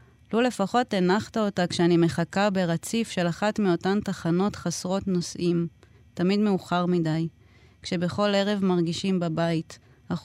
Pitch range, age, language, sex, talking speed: 160-195 Hz, 20-39, Hebrew, female, 125 wpm